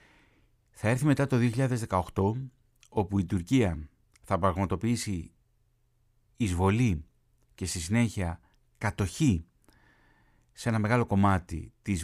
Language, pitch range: Greek, 95-120 Hz